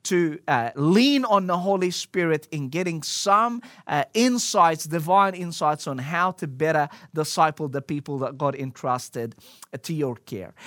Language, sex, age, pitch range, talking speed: English, male, 30-49, 165-220 Hz, 150 wpm